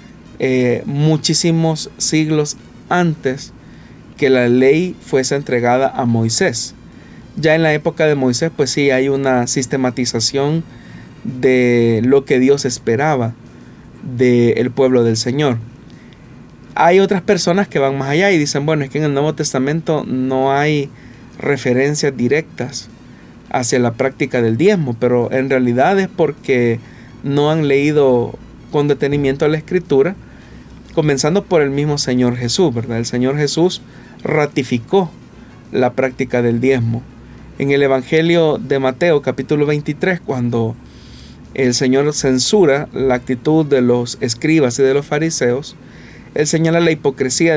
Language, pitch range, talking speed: Spanish, 125-155 Hz, 135 wpm